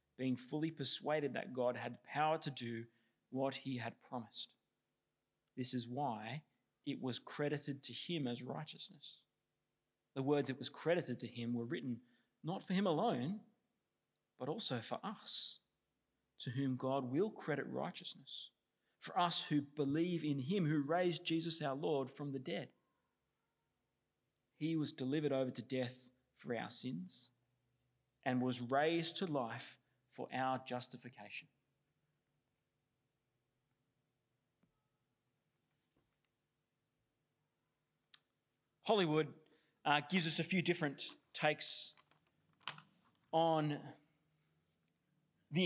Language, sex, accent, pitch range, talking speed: English, male, Australian, 125-165 Hz, 115 wpm